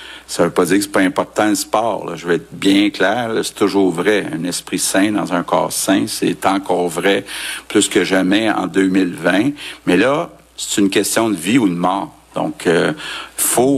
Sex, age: male, 60-79